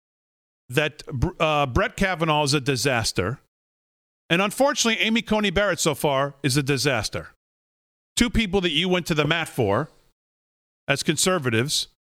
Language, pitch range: English, 130-185 Hz